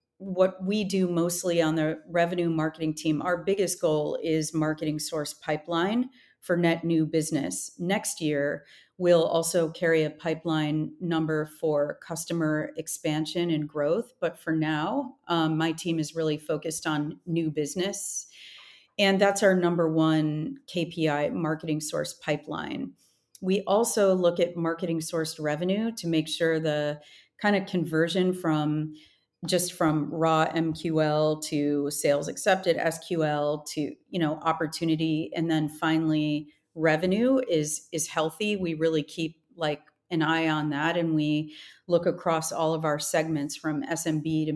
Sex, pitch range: female, 155-175 Hz